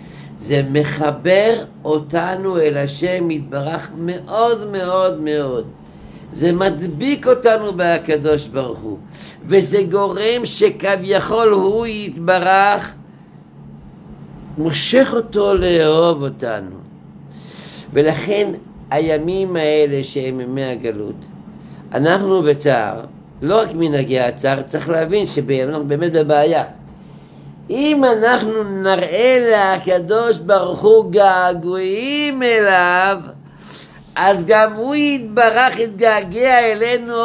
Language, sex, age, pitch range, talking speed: Hebrew, male, 60-79, 150-205 Hz, 85 wpm